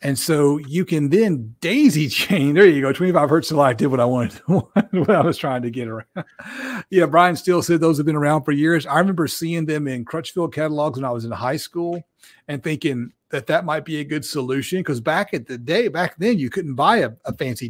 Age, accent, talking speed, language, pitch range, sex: 40-59, American, 235 wpm, English, 130-170 Hz, male